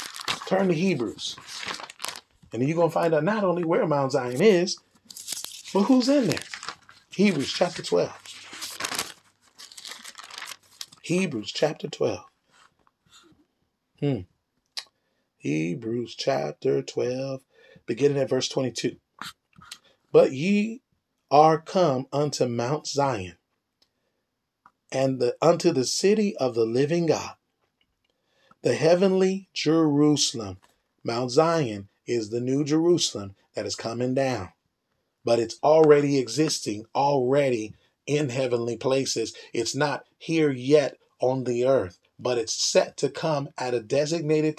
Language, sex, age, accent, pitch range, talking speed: English, male, 30-49, American, 120-160 Hz, 115 wpm